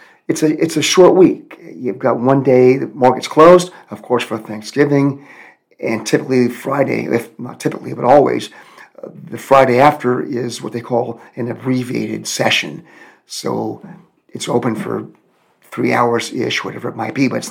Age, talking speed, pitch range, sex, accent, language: 50-69, 170 wpm, 120-150 Hz, male, American, English